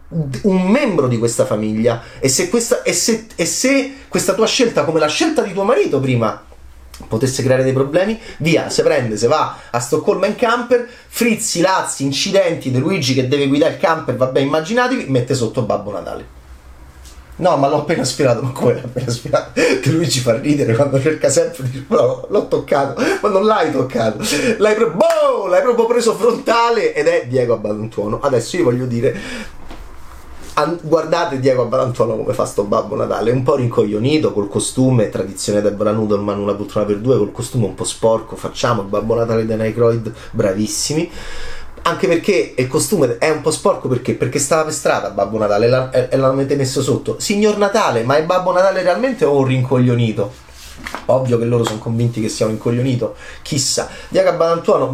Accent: native